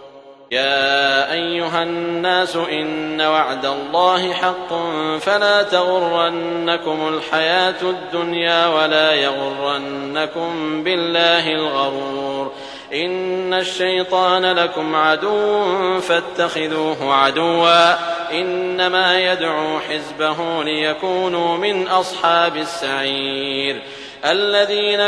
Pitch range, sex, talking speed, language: 155-185 Hz, male, 70 wpm, English